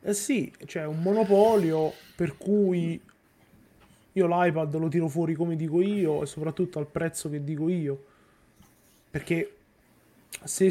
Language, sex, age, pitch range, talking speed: Italian, male, 20-39, 150-170 Hz, 140 wpm